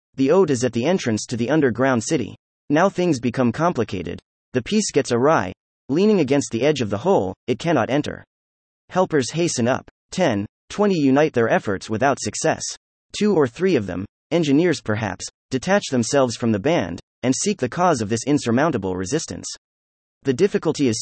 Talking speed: 175 wpm